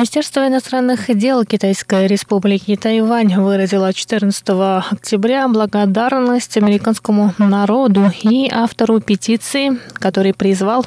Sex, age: female, 20-39